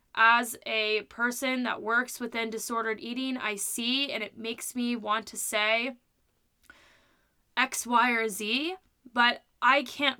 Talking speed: 140 wpm